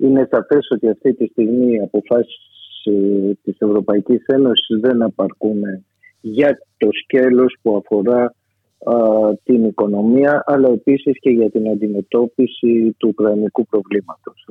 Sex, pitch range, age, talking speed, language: male, 105-125 Hz, 50-69, 125 wpm, Greek